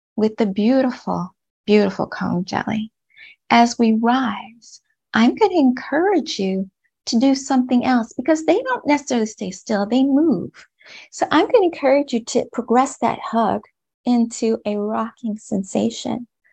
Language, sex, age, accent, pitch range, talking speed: English, female, 30-49, American, 195-255 Hz, 140 wpm